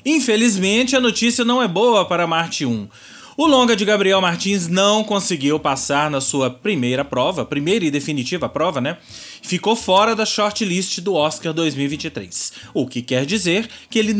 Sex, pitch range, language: male, 150-220 Hz, Portuguese